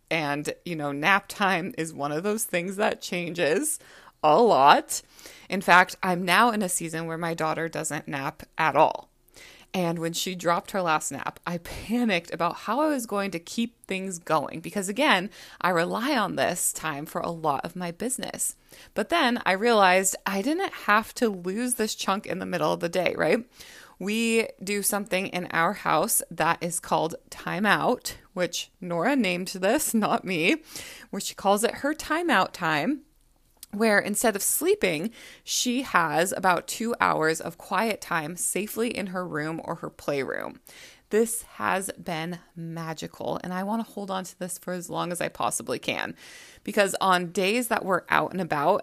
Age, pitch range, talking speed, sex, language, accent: 20-39, 170-230 Hz, 180 wpm, female, English, American